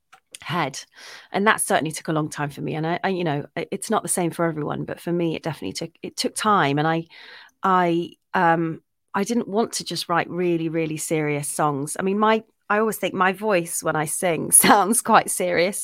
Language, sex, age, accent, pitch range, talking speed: English, female, 30-49, British, 160-185 Hz, 220 wpm